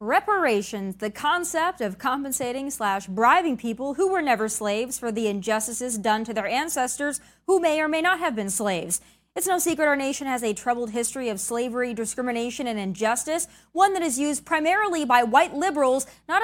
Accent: American